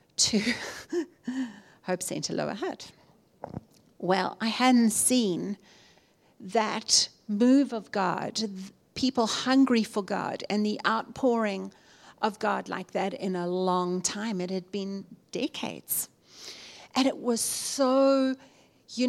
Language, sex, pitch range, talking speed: English, female, 205-255 Hz, 115 wpm